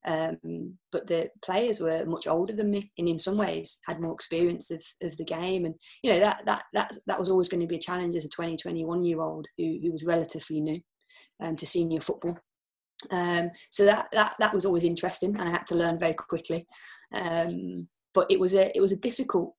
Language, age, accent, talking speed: English, 20-39, British, 225 wpm